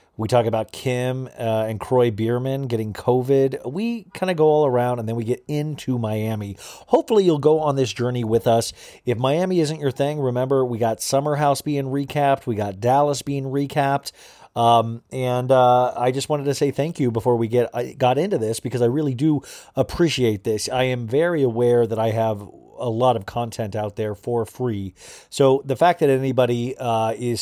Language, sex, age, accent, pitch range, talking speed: English, male, 40-59, American, 110-135 Hz, 200 wpm